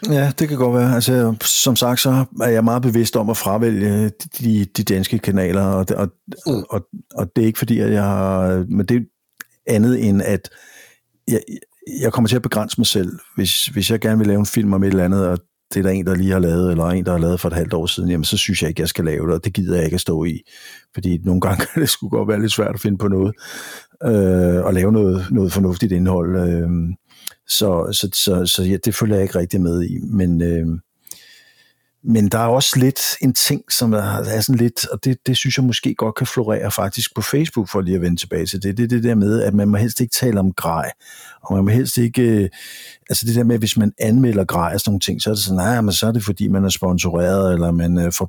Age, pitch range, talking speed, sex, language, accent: 60-79, 95-115 Hz, 255 wpm, male, Danish, native